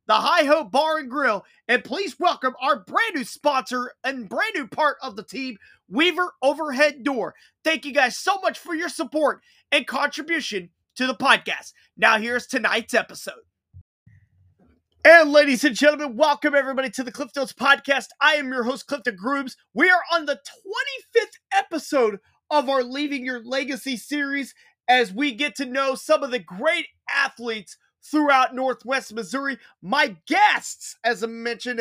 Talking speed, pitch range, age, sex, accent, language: 160 wpm, 255-315 Hz, 30-49, male, American, English